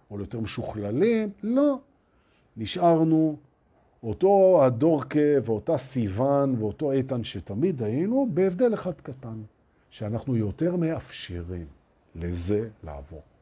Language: Hebrew